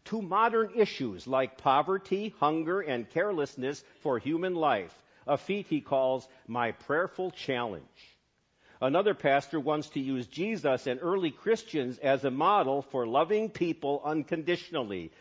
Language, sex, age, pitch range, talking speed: English, male, 50-69, 135-195 Hz, 135 wpm